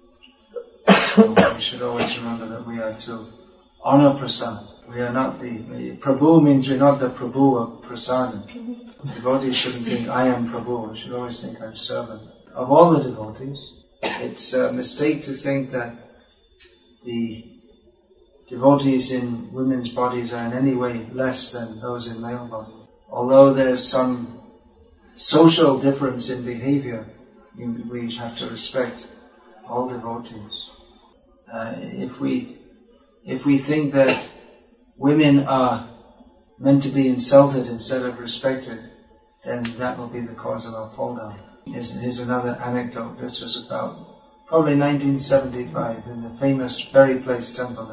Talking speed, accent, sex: 140 wpm, British, male